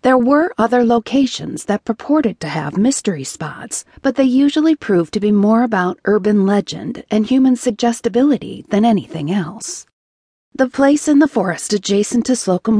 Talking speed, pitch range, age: 160 wpm, 205-260 Hz, 40-59